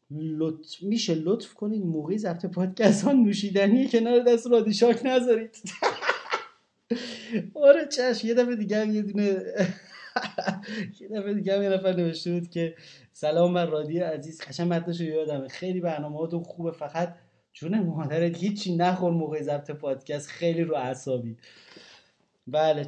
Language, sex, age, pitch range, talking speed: Persian, male, 30-49, 140-190 Hz, 130 wpm